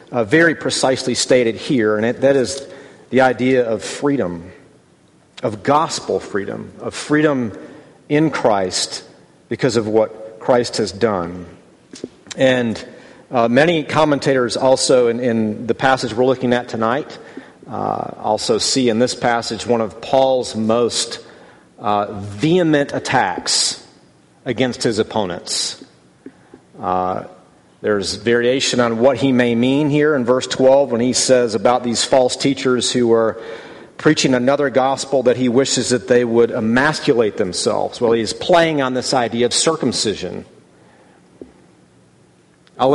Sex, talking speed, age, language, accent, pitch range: male, 135 wpm, 40-59, English, American, 115-140 Hz